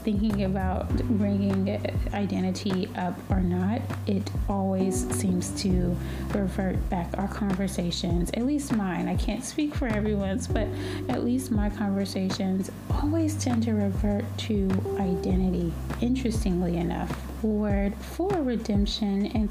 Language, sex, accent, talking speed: English, female, American, 125 wpm